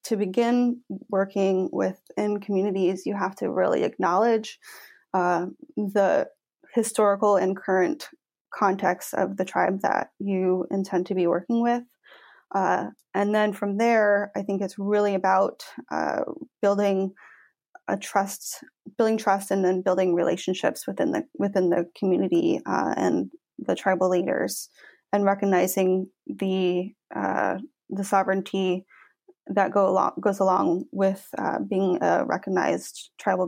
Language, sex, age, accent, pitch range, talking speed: English, female, 20-39, American, 190-230 Hz, 130 wpm